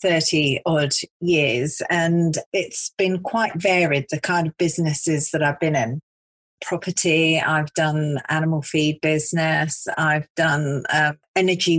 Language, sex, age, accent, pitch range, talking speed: English, female, 40-59, British, 150-180 Hz, 130 wpm